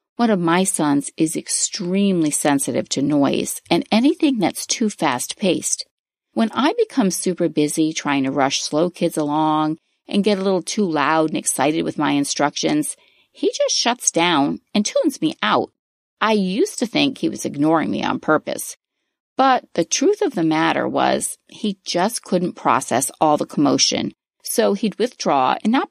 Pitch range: 165-260 Hz